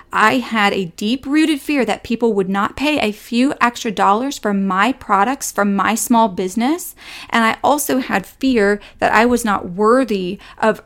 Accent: American